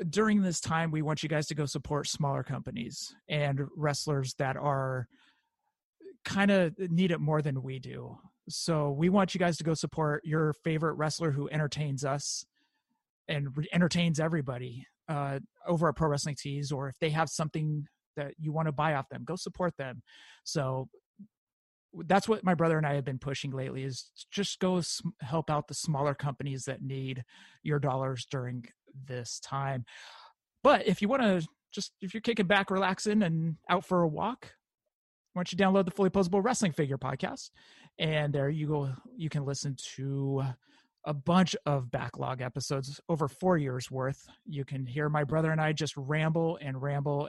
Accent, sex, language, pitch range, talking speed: American, male, English, 140-180 Hz, 180 wpm